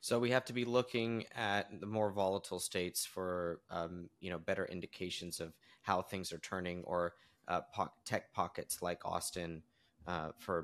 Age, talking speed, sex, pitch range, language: 30-49, 170 wpm, male, 95-120 Hz, English